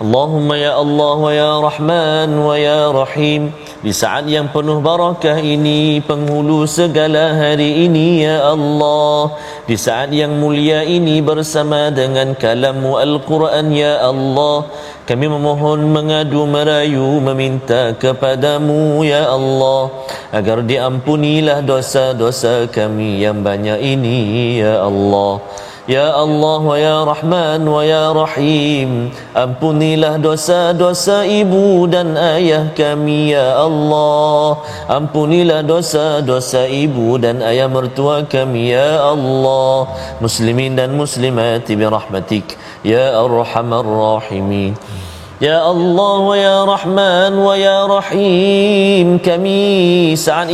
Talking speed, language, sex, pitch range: 105 wpm, Malayalam, male, 130-155 Hz